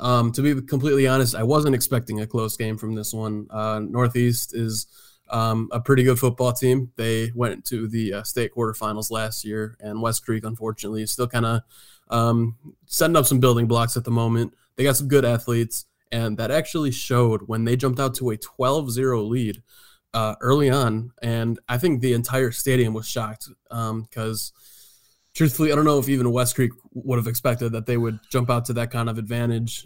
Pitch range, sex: 115-130 Hz, male